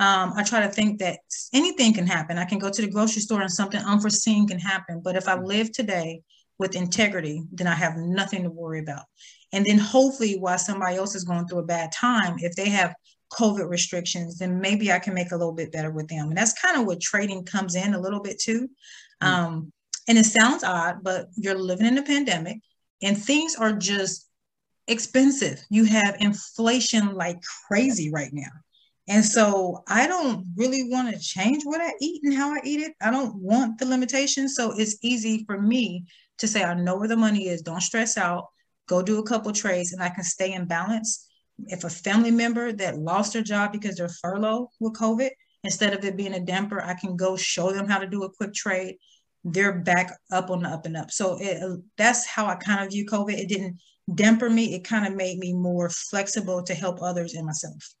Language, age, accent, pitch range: English, 30-49, American, 180-220 Hz